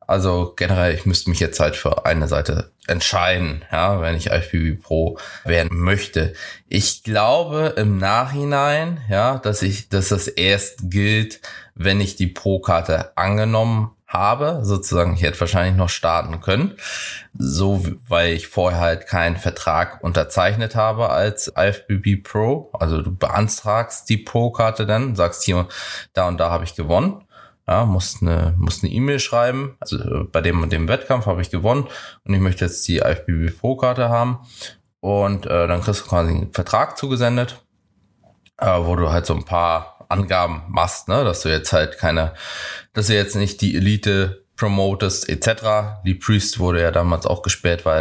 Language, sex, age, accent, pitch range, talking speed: German, male, 20-39, German, 85-105 Hz, 160 wpm